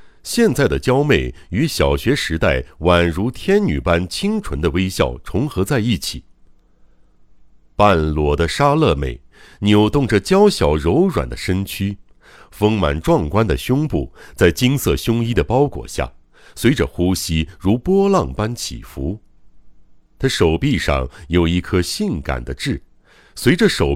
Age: 60-79